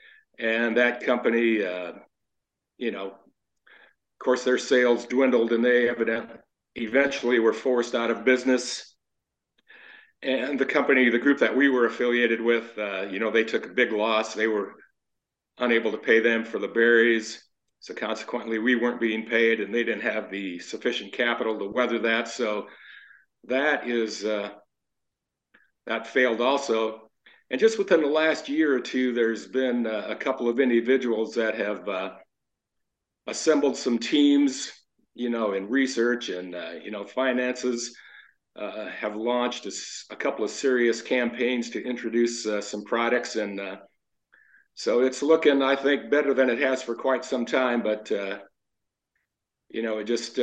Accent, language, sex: American, English, male